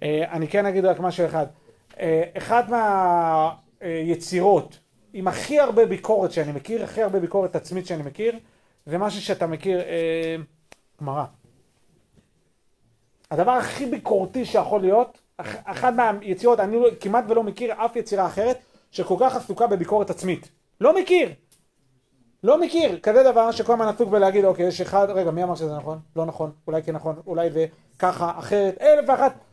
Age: 40-59